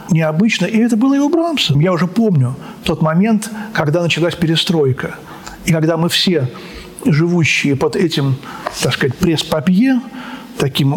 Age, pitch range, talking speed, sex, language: 40-59, 160-220 Hz, 140 wpm, male, Russian